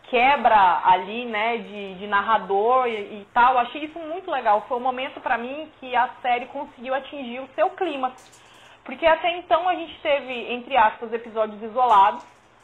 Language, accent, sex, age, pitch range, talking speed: Portuguese, Brazilian, female, 20-39, 235-320 Hz, 175 wpm